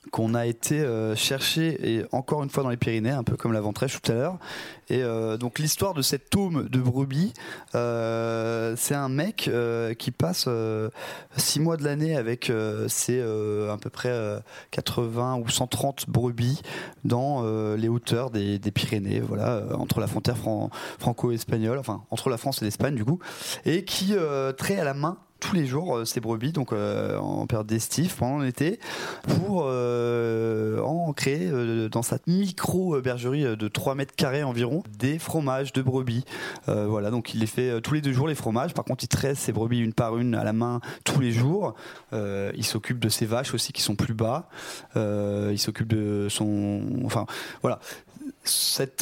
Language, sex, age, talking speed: French, male, 20-39, 190 wpm